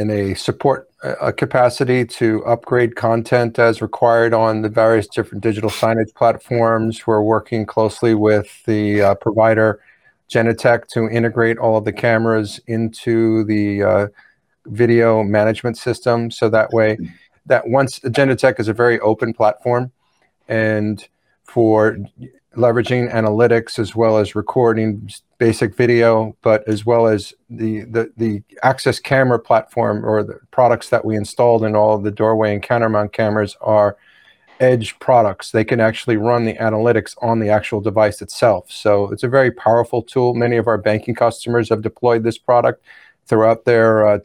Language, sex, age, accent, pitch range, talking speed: English, male, 40-59, American, 110-120 Hz, 155 wpm